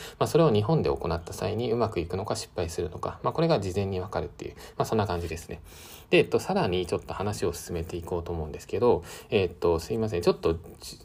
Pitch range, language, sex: 85-135 Hz, Japanese, male